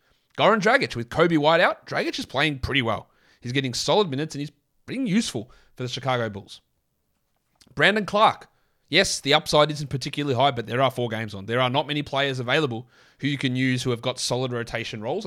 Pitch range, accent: 120-155 Hz, Australian